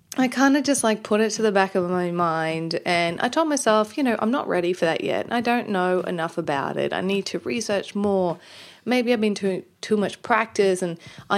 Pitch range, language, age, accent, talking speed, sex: 175-235 Hz, English, 30-49, Australian, 235 wpm, female